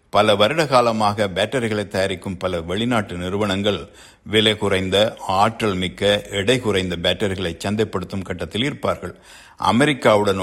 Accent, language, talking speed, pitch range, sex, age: native, Tamil, 110 wpm, 95-120 Hz, male, 60-79